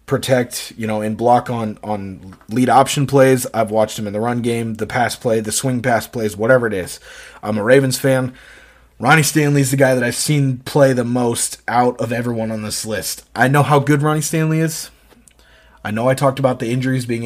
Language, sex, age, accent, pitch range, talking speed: English, male, 30-49, American, 105-130 Hz, 220 wpm